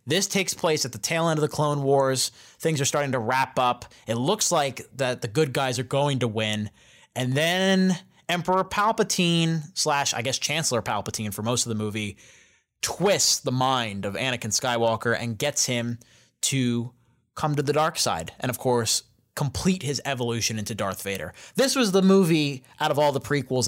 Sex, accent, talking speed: male, American, 190 wpm